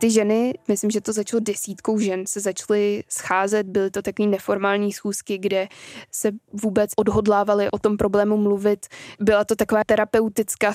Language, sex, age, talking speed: Czech, female, 20-39, 155 wpm